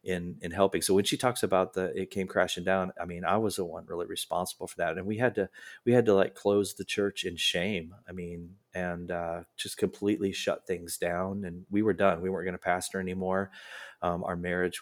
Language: English